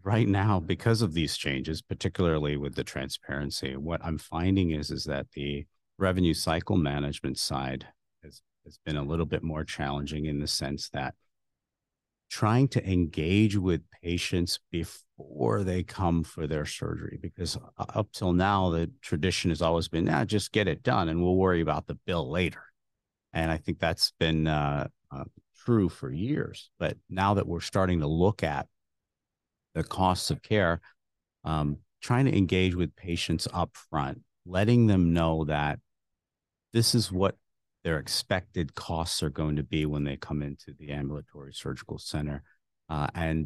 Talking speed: 165 wpm